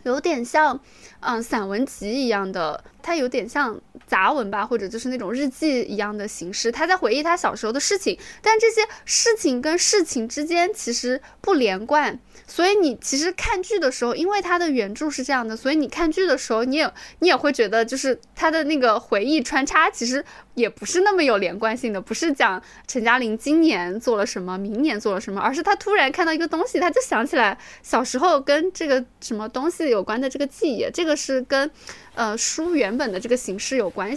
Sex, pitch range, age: female, 240-340 Hz, 20-39